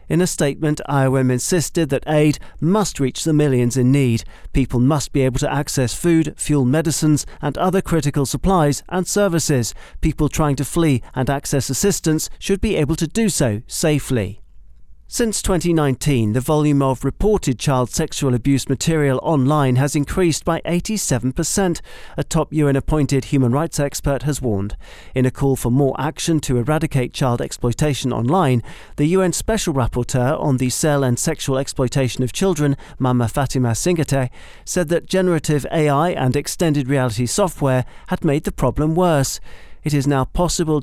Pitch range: 130-160 Hz